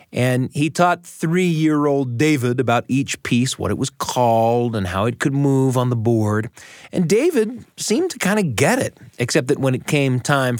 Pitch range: 110-145 Hz